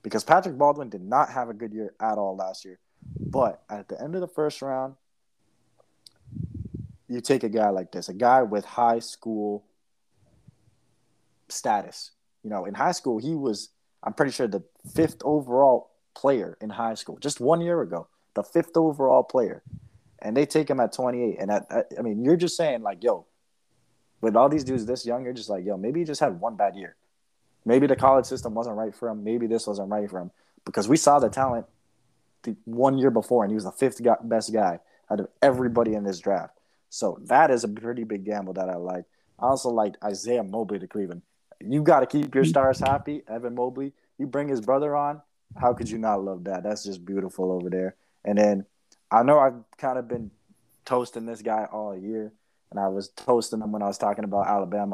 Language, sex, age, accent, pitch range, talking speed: English, male, 20-39, American, 105-135 Hz, 210 wpm